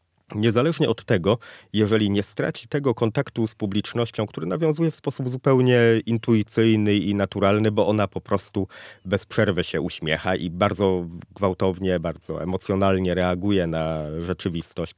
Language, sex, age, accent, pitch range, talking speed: Polish, male, 30-49, native, 95-120 Hz, 135 wpm